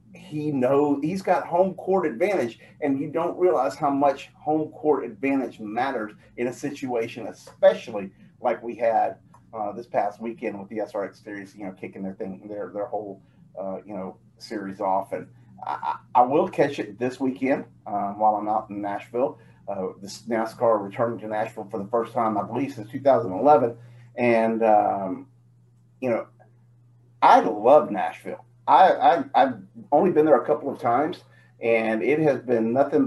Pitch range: 110-140 Hz